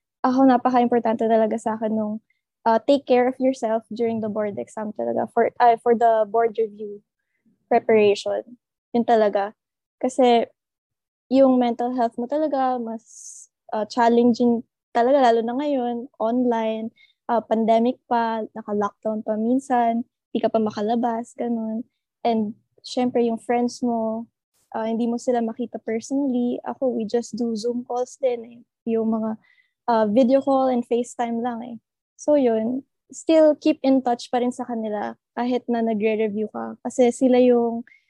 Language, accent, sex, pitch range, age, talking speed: English, Filipino, female, 225-255 Hz, 20-39, 150 wpm